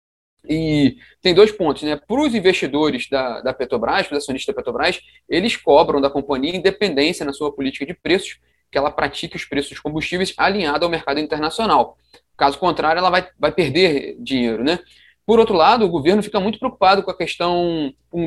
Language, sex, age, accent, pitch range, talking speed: Portuguese, male, 20-39, Brazilian, 135-175 Hz, 185 wpm